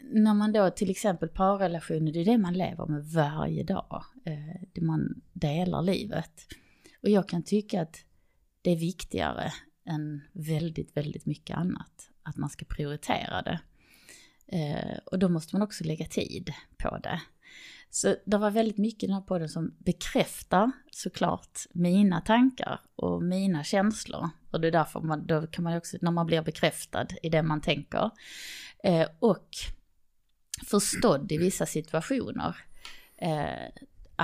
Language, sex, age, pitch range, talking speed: Swedish, female, 30-49, 160-200 Hz, 145 wpm